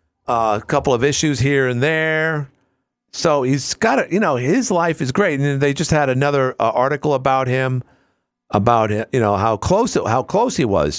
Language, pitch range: English, 105-140 Hz